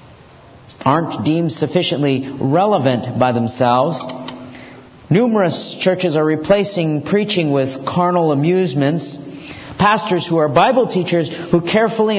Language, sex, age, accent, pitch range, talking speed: English, male, 50-69, American, 165-225 Hz, 105 wpm